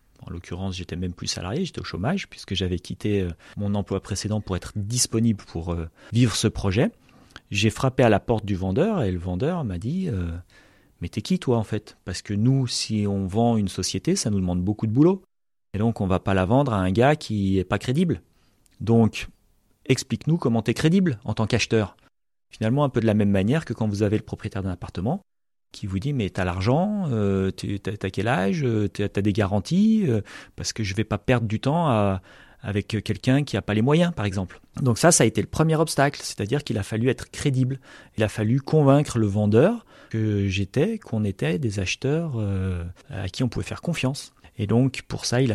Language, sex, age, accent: French, male, 40-59, French